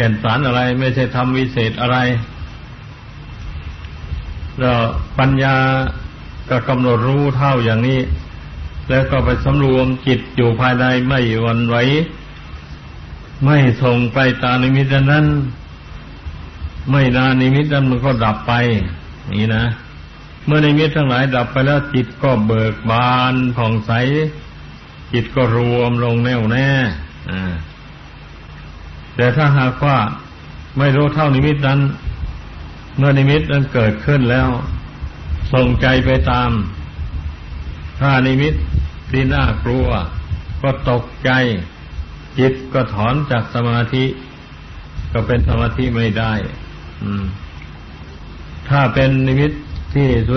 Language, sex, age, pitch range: Thai, male, 60-79, 80-130 Hz